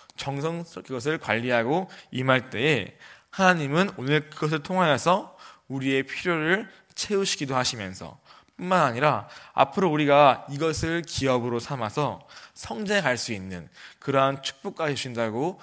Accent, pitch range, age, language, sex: native, 115-155 Hz, 20-39, Korean, male